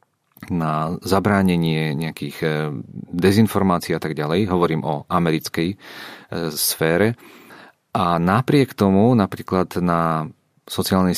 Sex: male